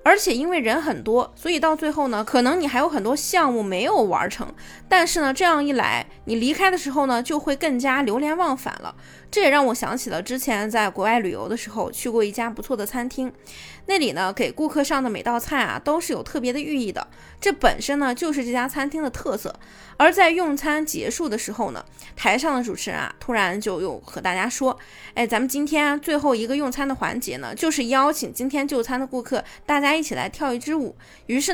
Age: 20-39